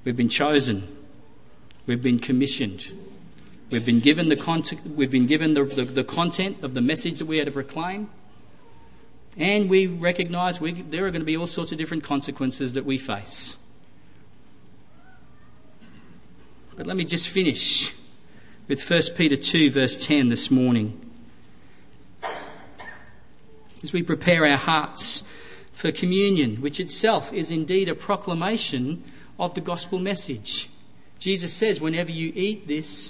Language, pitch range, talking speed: English, 140-195 Hz, 140 wpm